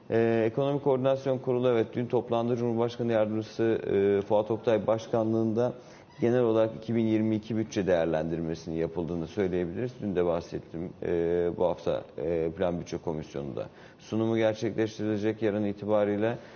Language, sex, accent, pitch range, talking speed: Turkish, male, native, 90-115 Hz, 125 wpm